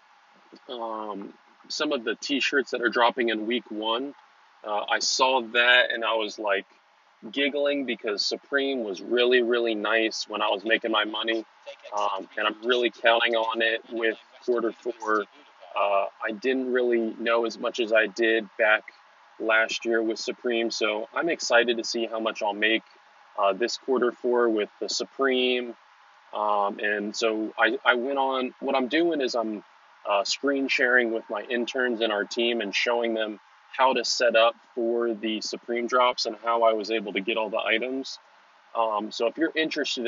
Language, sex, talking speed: English, male, 180 wpm